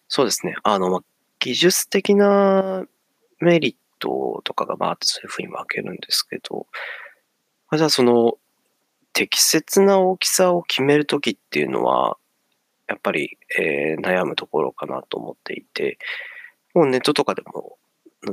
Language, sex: Japanese, male